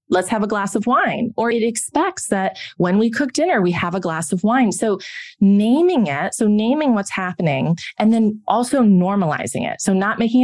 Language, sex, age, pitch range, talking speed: English, female, 20-39, 180-235 Hz, 200 wpm